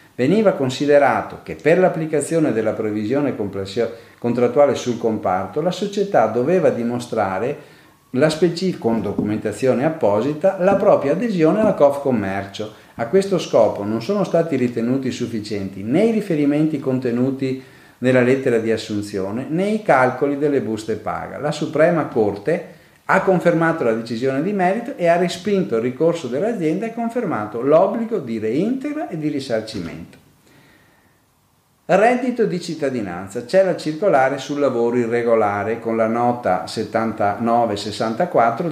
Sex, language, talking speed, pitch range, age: male, Italian, 130 wpm, 115-175 Hz, 40-59